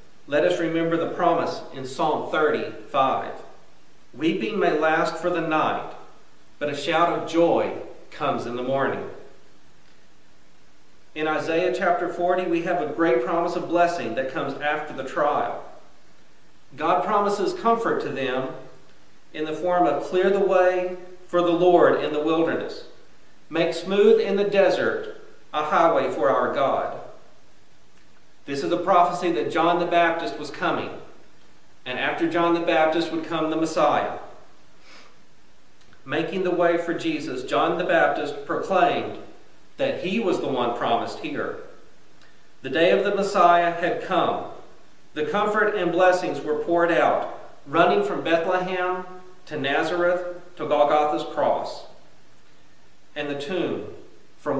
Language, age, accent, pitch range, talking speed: English, 40-59, American, 150-180 Hz, 140 wpm